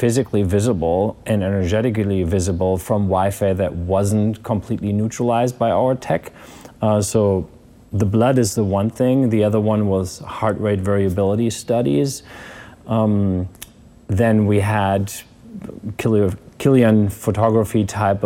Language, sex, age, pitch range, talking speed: English, male, 30-49, 95-110 Hz, 120 wpm